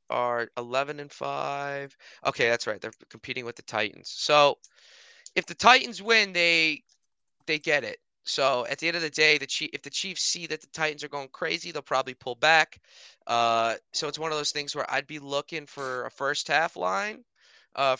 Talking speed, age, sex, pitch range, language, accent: 205 wpm, 20-39, male, 125-160 Hz, English, American